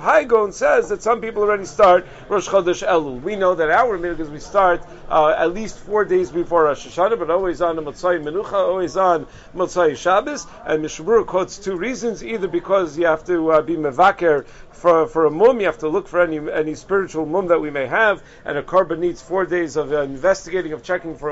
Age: 50-69